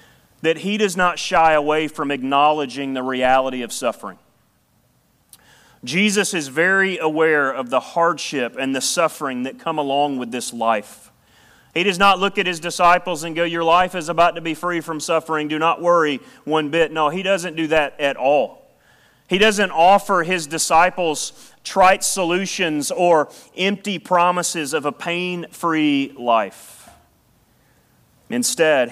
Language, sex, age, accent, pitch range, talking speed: English, male, 30-49, American, 135-175 Hz, 150 wpm